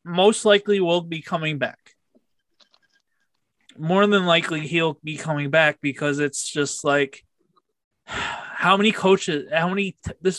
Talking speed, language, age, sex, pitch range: 135 wpm, English, 20-39, male, 140-180 Hz